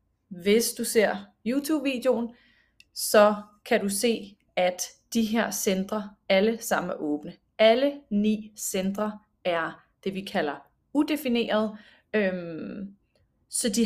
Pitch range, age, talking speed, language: 190-230 Hz, 30-49, 115 wpm, Danish